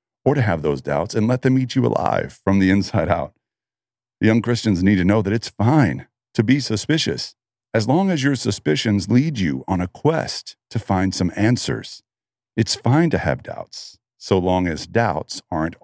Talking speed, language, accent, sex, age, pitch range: 195 wpm, English, American, male, 50-69, 85-120 Hz